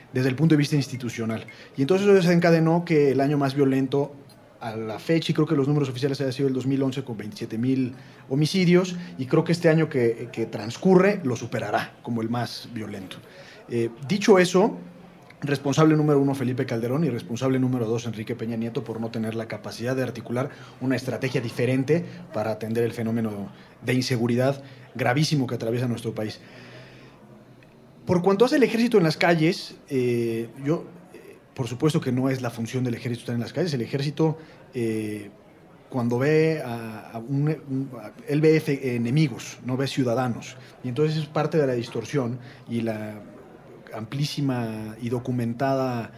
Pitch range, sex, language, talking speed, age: 115-150 Hz, male, Spanish, 170 wpm, 30-49